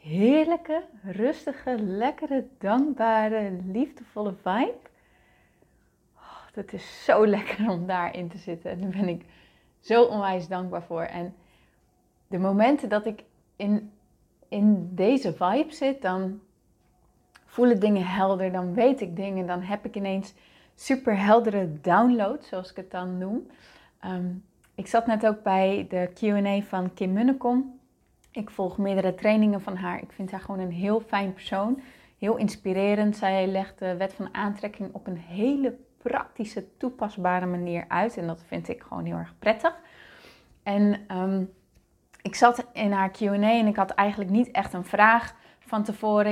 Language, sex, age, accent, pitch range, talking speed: Dutch, female, 30-49, Dutch, 190-220 Hz, 150 wpm